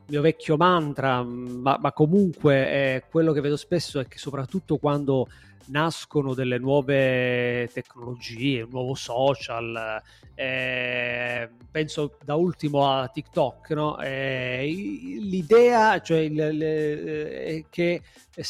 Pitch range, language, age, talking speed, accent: 130-160 Hz, Italian, 30-49, 120 wpm, native